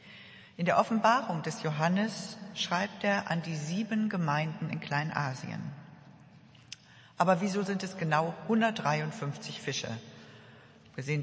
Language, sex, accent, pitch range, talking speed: German, female, German, 150-185 Hz, 110 wpm